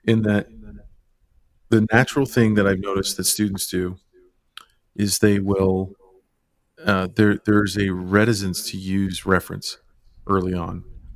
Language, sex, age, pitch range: English, male, 40-59, 95-110 Hz